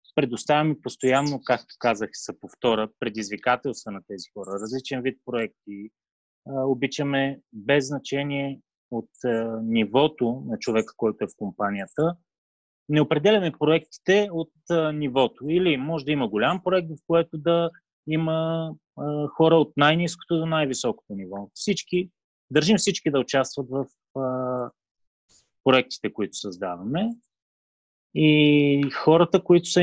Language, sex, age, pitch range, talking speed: Bulgarian, male, 30-49, 115-160 Hz, 115 wpm